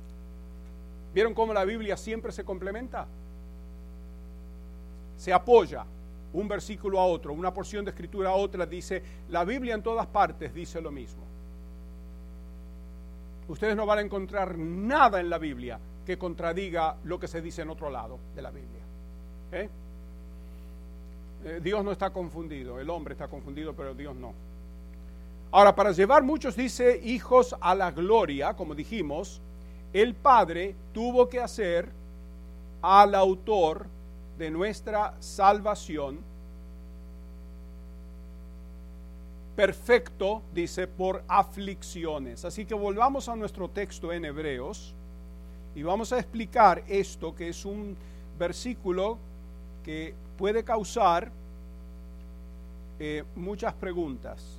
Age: 40-59